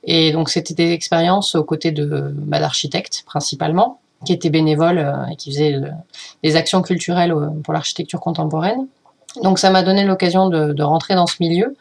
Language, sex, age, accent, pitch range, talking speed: French, female, 30-49, French, 155-180 Hz, 180 wpm